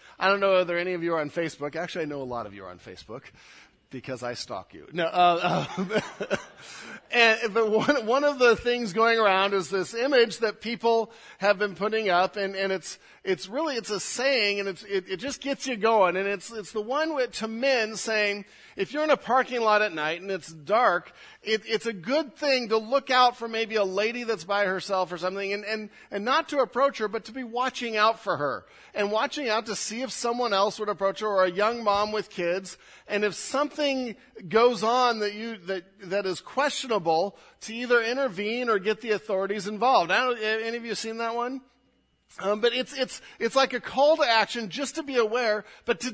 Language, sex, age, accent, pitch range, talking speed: English, male, 40-59, American, 195-250 Hz, 220 wpm